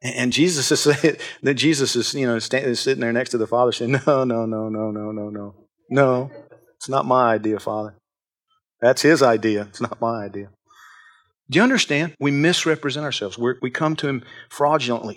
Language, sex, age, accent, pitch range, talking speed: English, male, 40-59, American, 120-155 Hz, 200 wpm